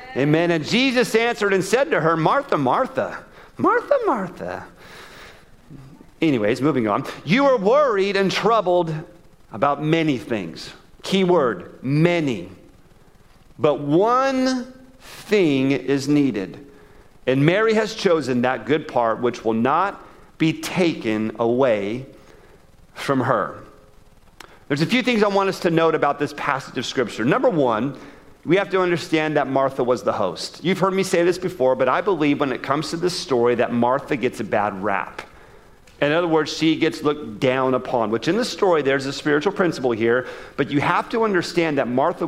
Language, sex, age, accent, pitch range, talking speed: English, male, 40-59, American, 130-180 Hz, 165 wpm